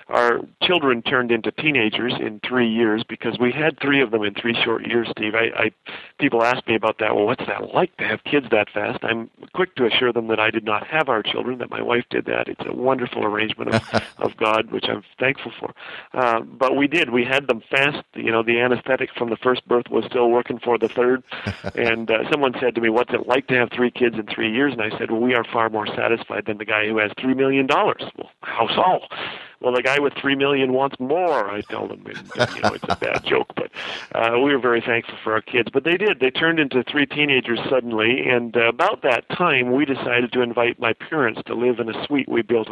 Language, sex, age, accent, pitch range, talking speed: English, male, 40-59, American, 115-130 Hz, 245 wpm